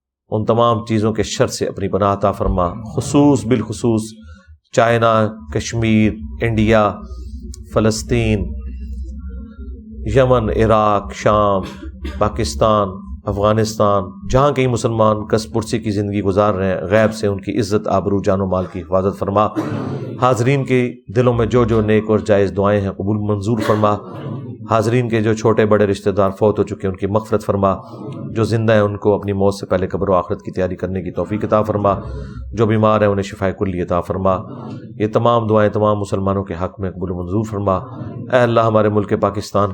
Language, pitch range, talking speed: Urdu, 95-110 Hz, 170 wpm